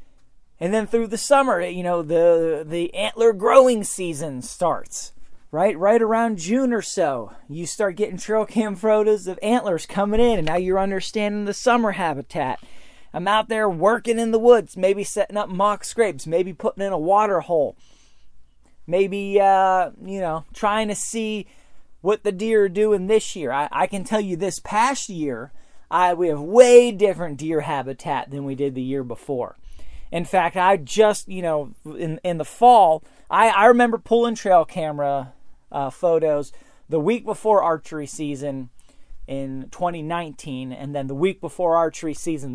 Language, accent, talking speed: English, American, 170 wpm